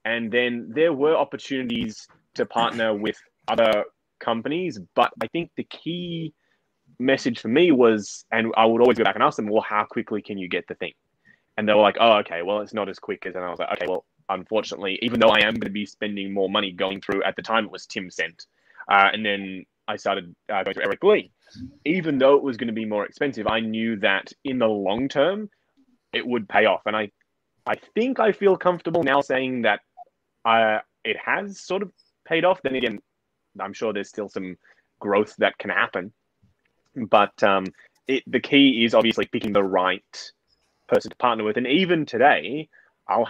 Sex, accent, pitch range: male, Australian, 105-145 Hz